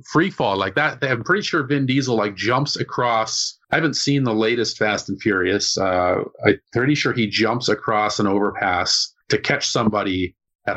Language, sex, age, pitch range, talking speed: English, male, 40-59, 105-130 Hz, 185 wpm